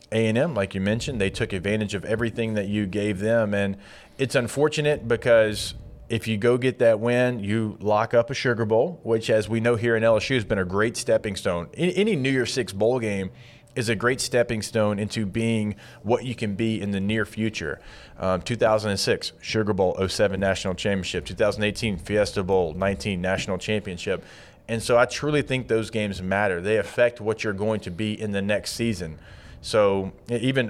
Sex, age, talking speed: male, 30-49, 190 wpm